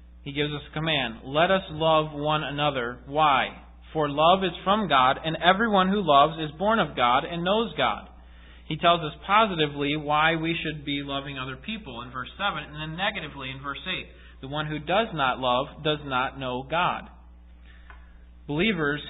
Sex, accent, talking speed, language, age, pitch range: male, American, 180 wpm, English, 30-49, 130-170 Hz